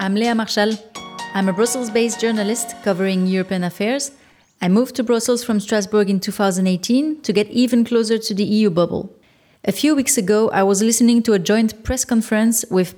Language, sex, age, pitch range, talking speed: English, female, 30-49, 190-230 Hz, 180 wpm